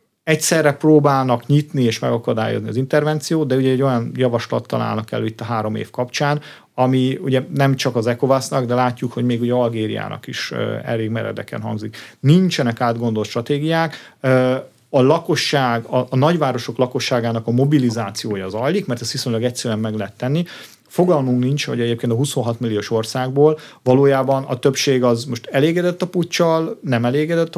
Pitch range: 115-145 Hz